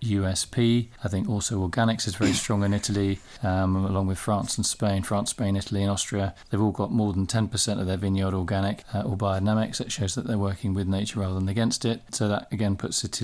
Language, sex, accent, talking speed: English, male, British, 225 wpm